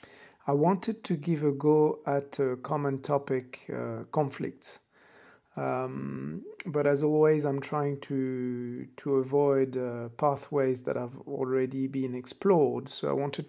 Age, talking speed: 50-69, 140 wpm